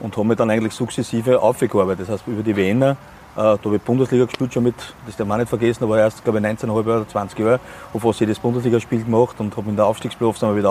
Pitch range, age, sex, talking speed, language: 110-125 Hz, 30-49, male, 240 wpm, German